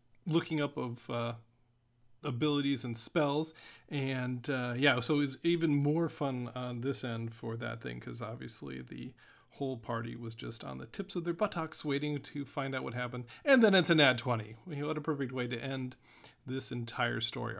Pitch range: 120-150 Hz